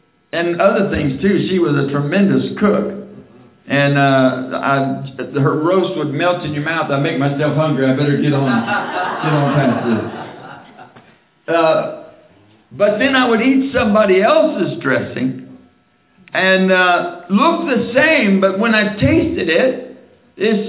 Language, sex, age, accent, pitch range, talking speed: English, male, 60-79, American, 170-250 Hz, 150 wpm